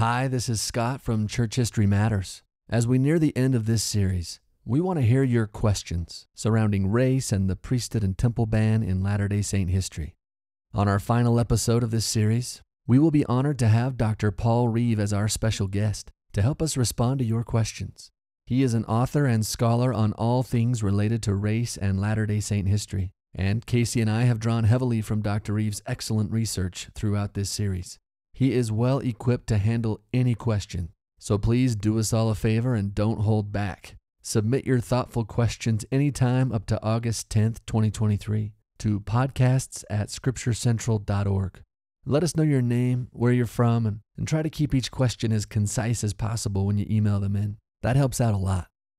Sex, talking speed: male, 185 wpm